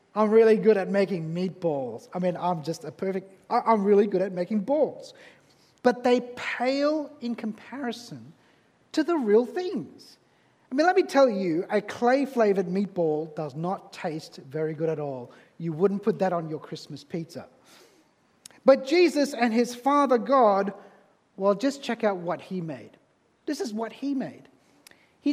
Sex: male